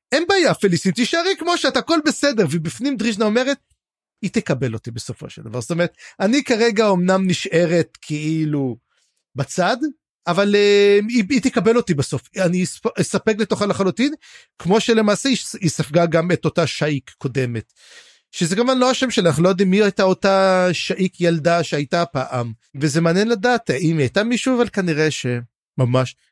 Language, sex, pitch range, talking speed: Hebrew, male, 155-220 Hz, 155 wpm